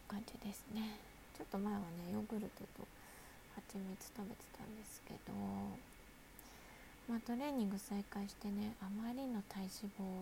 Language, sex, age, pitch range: Japanese, female, 20-39, 195-235 Hz